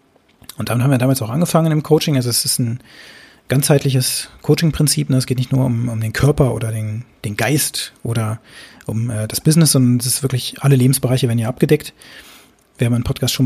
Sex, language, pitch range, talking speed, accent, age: male, German, 120-145 Hz, 205 wpm, German, 30-49